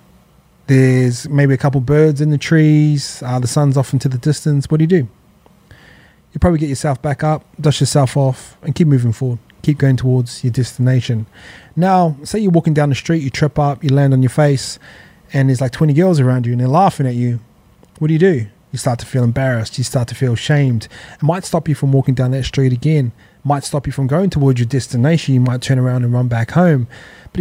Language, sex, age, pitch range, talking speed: English, male, 20-39, 125-150 Hz, 230 wpm